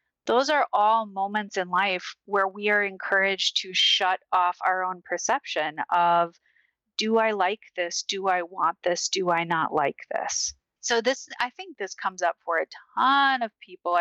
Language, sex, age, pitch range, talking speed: English, female, 30-49, 190-255 Hz, 180 wpm